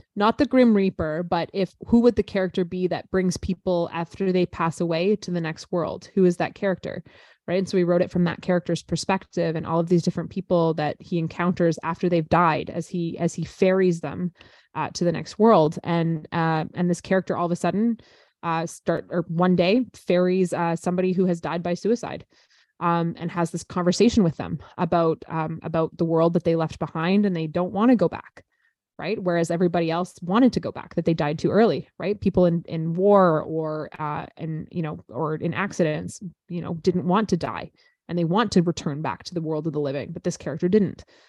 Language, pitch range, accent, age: English, 165-190 Hz, American, 20-39